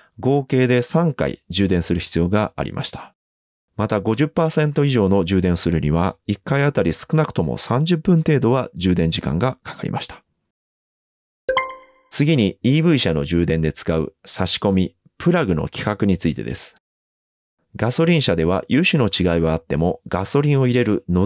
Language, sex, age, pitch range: Japanese, male, 30-49, 85-130 Hz